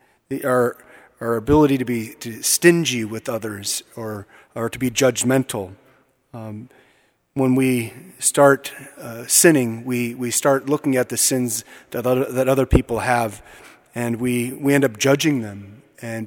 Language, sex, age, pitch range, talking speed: English, male, 30-49, 115-140 Hz, 145 wpm